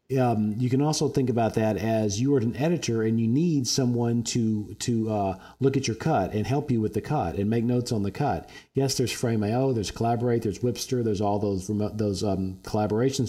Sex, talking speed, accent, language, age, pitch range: male, 220 wpm, American, English, 40-59, 95-120 Hz